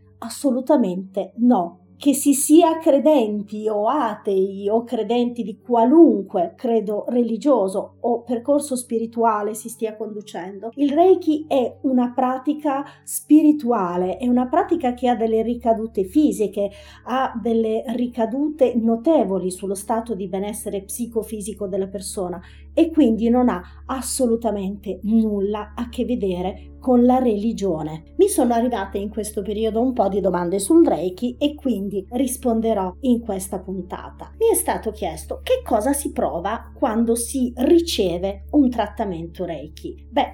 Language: Italian